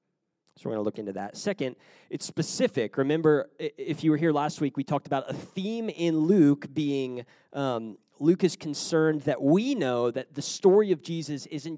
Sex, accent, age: male, American, 30-49